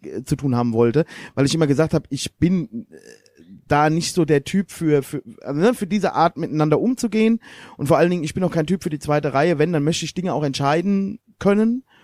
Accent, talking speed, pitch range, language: German, 220 wpm, 150-190 Hz, German